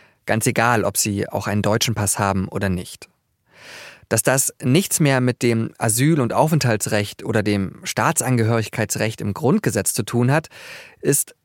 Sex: male